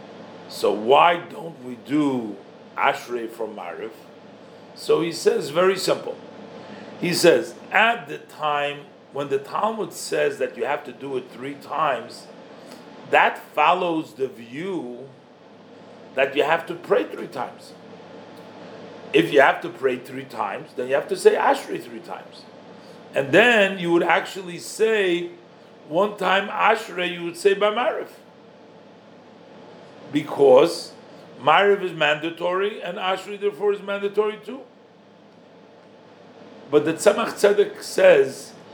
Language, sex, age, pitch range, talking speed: English, male, 50-69, 160-220 Hz, 130 wpm